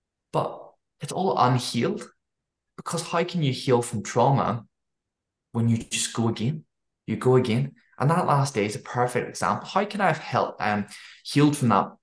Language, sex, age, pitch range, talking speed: English, male, 10-29, 110-140 Hz, 175 wpm